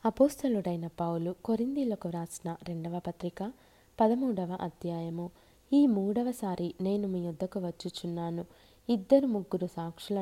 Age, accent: 20-39, native